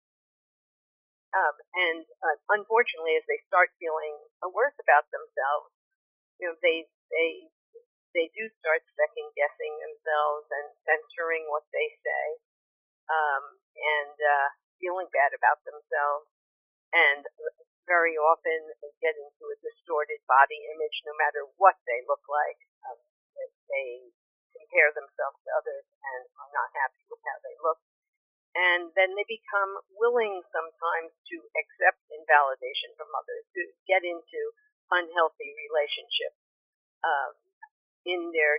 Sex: female